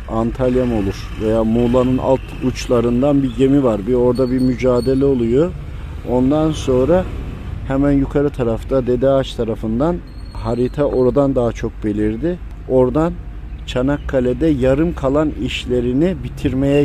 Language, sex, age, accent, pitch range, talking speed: Turkish, male, 50-69, native, 105-135 Hz, 115 wpm